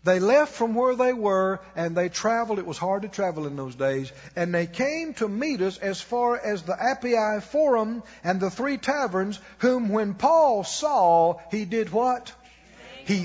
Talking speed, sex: 185 wpm, male